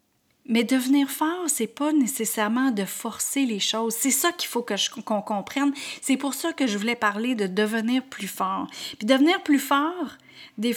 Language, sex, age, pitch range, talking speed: French, female, 30-49, 210-285 Hz, 195 wpm